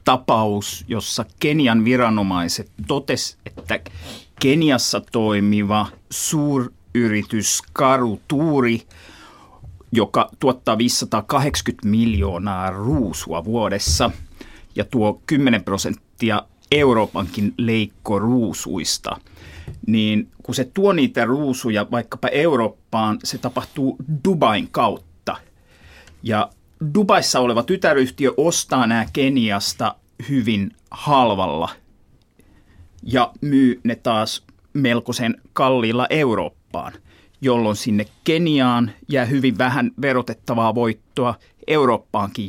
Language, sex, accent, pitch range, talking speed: Finnish, male, native, 105-130 Hz, 85 wpm